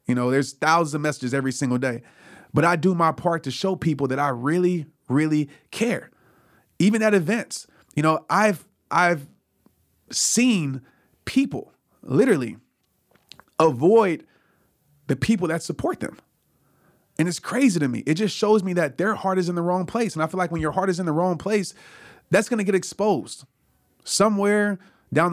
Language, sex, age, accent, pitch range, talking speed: English, male, 30-49, American, 140-190 Hz, 175 wpm